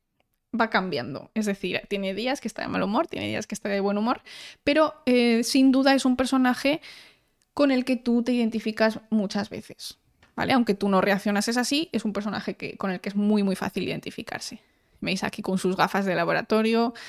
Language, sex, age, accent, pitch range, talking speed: Spanish, female, 20-39, Spanish, 200-245 Hz, 205 wpm